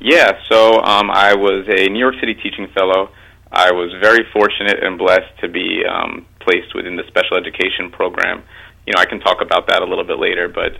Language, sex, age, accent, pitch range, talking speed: English, male, 30-49, American, 90-115 Hz, 210 wpm